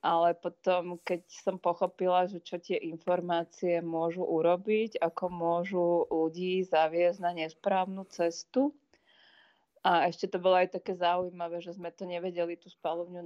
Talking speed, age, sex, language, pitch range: 140 wpm, 20-39, female, Slovak, 170-195 Hz